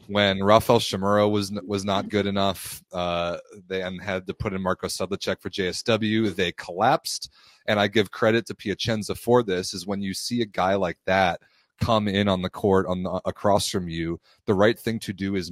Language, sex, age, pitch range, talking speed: English, male, 30-49, 90-105 Hz, 200 wpm